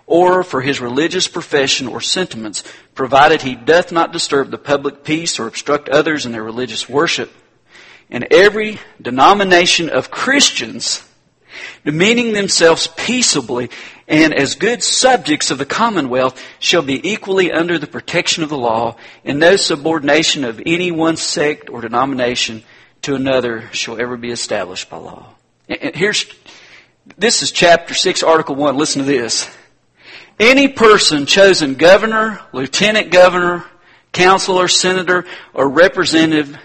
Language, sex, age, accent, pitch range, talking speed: English, male, 50-69, American, 130-185 Hz, 135 wpm